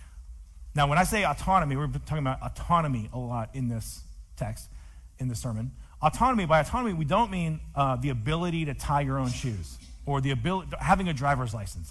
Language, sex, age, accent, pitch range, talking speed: English, male, 40-59, American, 115-155 Hz, 190 wpm